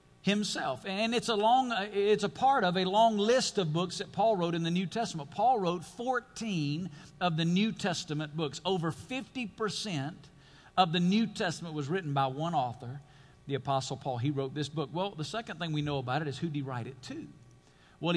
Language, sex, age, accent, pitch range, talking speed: English, male, 50-69, American, 140-200 Hz, 210 wpm